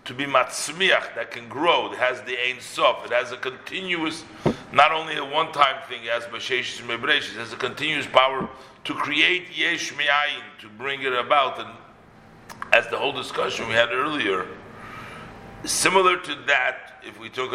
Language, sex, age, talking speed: English, male, 50-69, 170 wpm